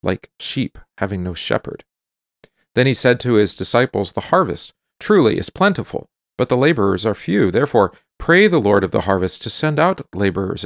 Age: 40-59